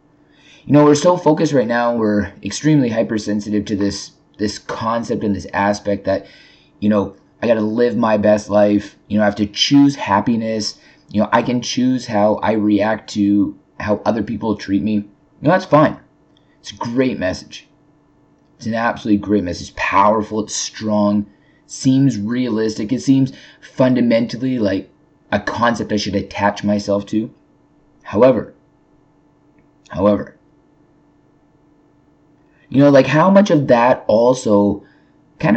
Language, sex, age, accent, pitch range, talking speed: English, male, 20-39, American, 105-130 Hz, 150 wpm